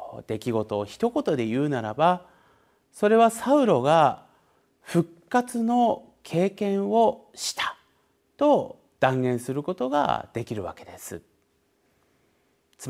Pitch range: 130-205 Hz